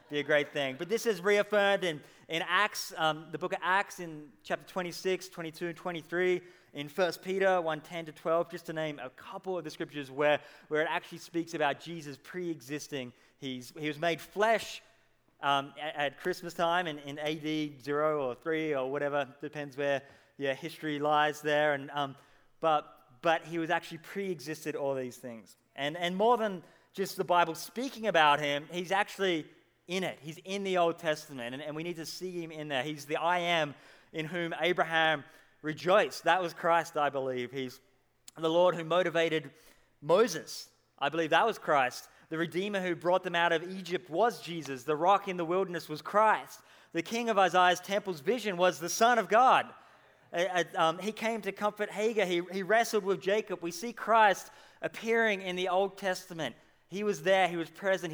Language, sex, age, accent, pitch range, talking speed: English, male, 20-39, Australian, 150-185 Hz, 195 wpm